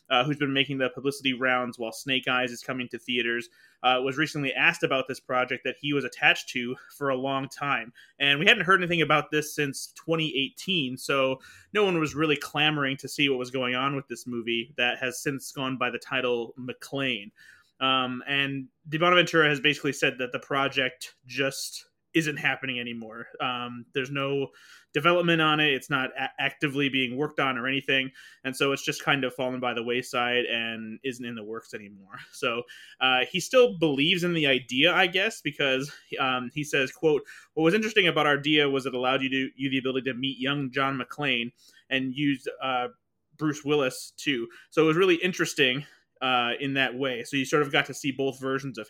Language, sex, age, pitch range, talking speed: English, male, 20-39, 125-150 Hz, 200 wpm